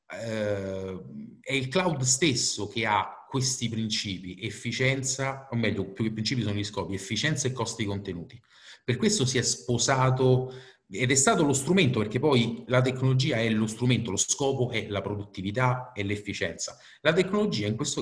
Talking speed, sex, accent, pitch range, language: 165 wpm, male, native, 105-125 Hz, Italian